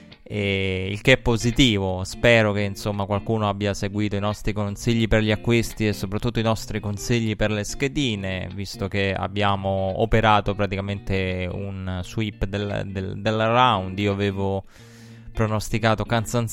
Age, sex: 20-39, male